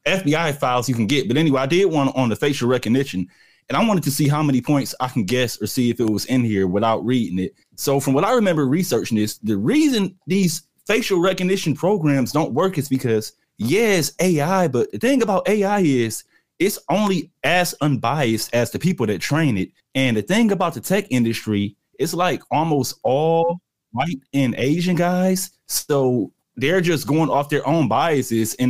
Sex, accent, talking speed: male, American, 200 wpm